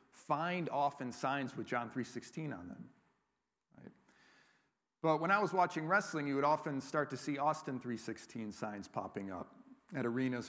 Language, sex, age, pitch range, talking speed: English, male, 40-59, 125-170 Hz, 155 wpm